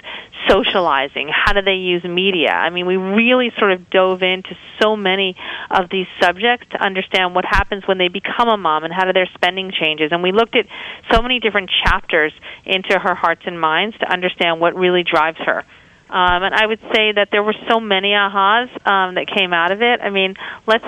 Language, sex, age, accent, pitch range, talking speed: English, female, 40-59, American, 175-205 Hz, 210 wpm